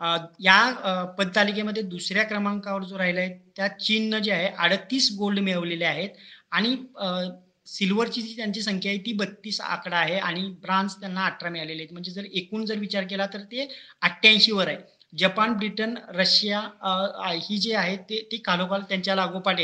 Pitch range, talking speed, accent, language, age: 185-215 Hz, 175 wpm, native, Marathi, 30-49